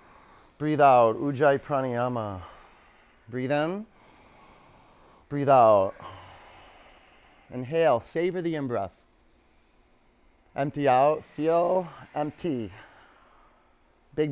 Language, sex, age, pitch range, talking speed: English, male, 30-49, 100-150 Hz, 70 wpm